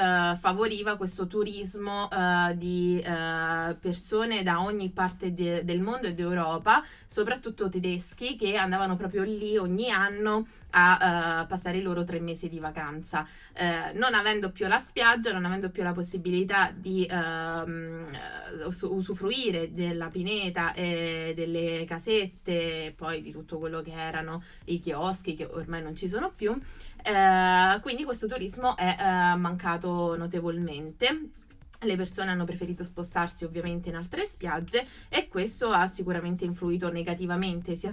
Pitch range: 170-195 Hz